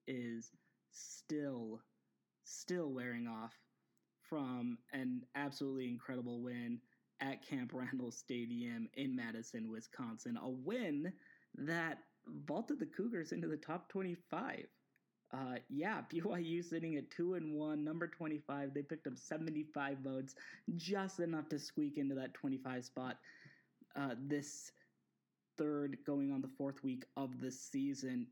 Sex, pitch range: male, 130-170 Hz